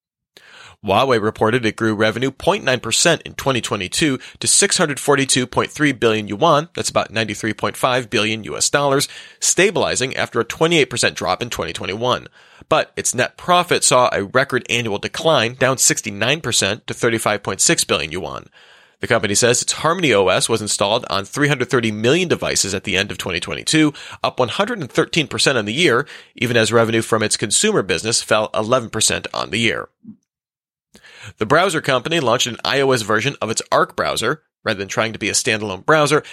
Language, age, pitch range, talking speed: English, 30-49, 110-145 Hz, 150 wpm